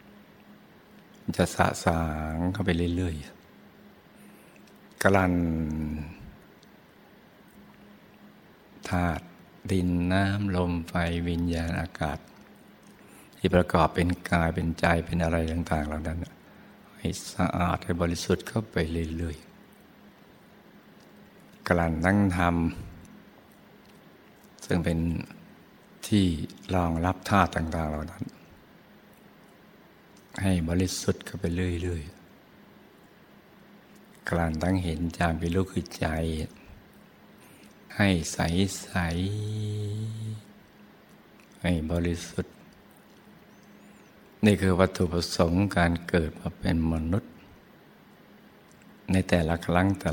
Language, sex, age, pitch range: Thai, male, 60-79, 85-95 Hz